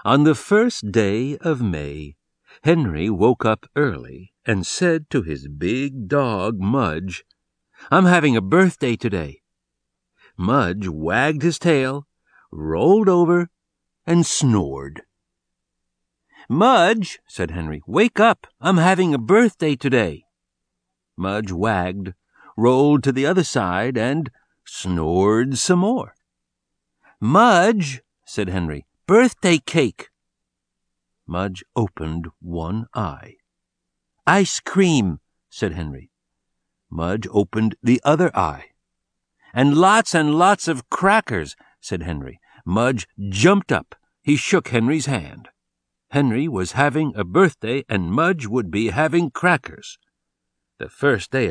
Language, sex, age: Chinese, male, 60-79